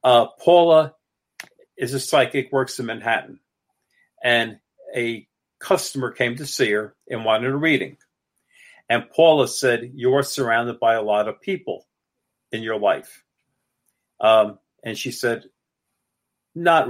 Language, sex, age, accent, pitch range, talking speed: English, male, 50-69, American, 120-145 Hz, 130 wpm